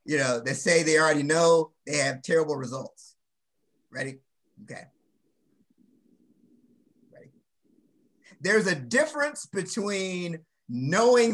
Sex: male